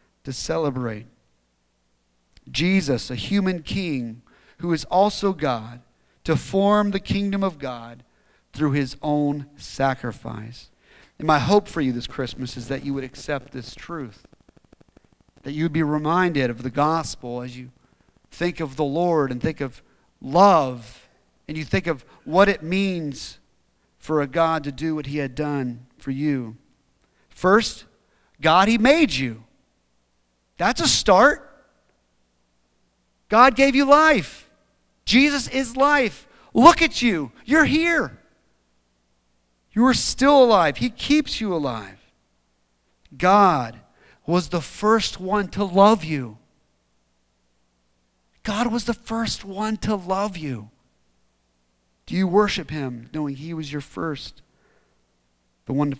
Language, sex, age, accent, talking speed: English, male, 40-59, American, 135 wpm